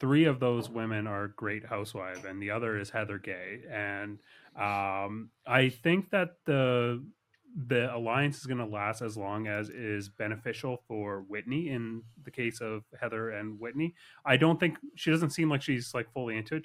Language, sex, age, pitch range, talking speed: English, male, 30-49, 105-125 Hz, 185 wpm